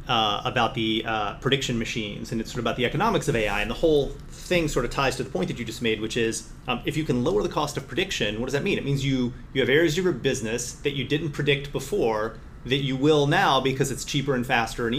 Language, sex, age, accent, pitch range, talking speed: English, male, 30-49, American, 115-140 Hz, 270 wpm